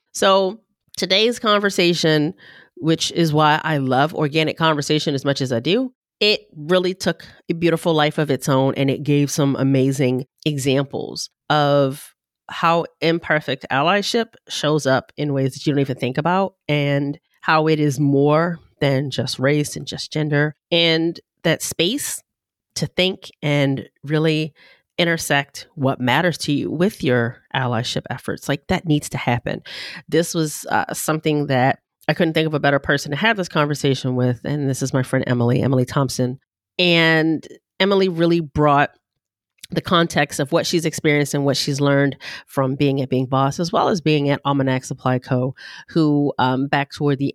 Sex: female